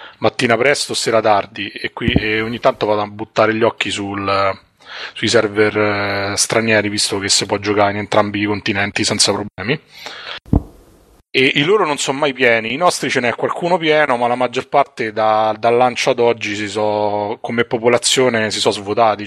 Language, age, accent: Italian, 20-39, native